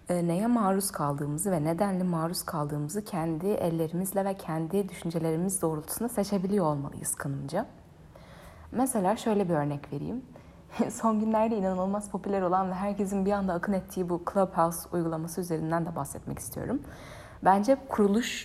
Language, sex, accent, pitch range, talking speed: Turkish, female, native, 160-200 Hz, 135 wpm